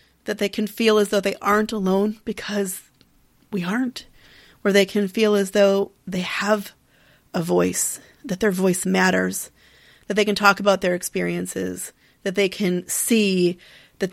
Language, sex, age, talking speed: English, female, 30-49, 160 wpm